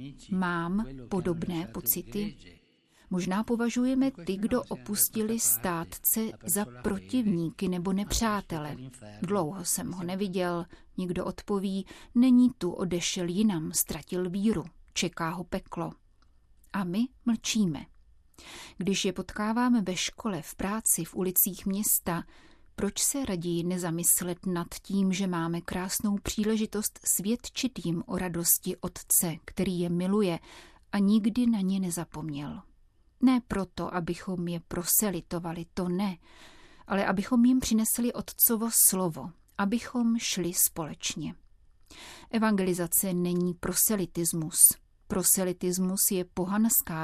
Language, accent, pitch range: Czech, native, 175-215 Hz